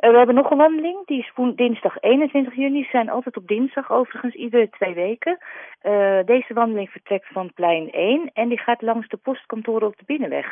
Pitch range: 165-225 Hz